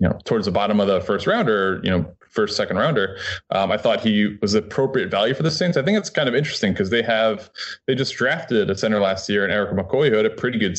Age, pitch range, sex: 20-39, 95-115 Hz, male